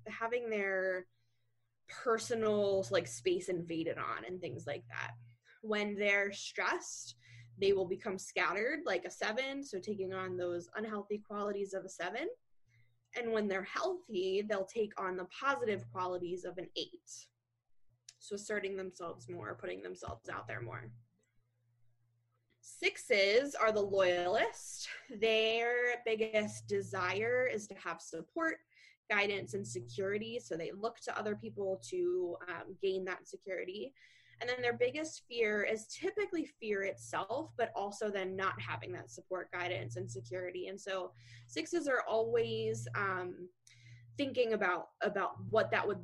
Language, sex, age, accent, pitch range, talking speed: English, female, 20-39, American, 170-230 Hz, 140 wpm